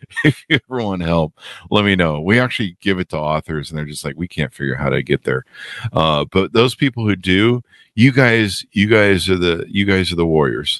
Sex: male